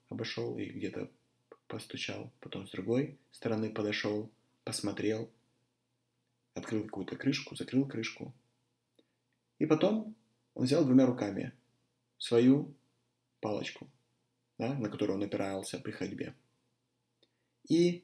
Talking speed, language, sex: 100 wpm, Russian, male